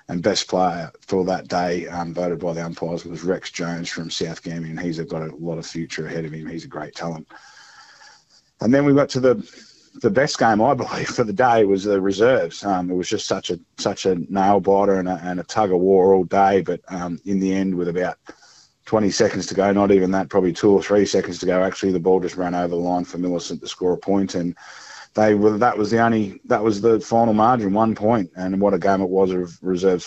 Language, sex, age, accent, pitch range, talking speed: English, male, 30-49, Australian, 90-105 Hz, 245 wpm